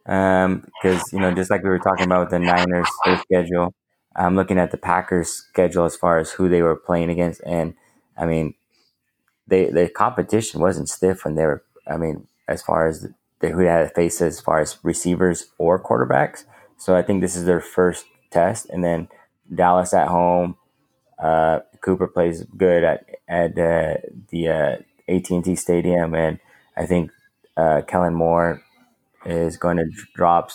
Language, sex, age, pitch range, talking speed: English, male, 20-39, 85-90 Hz, 185 wpm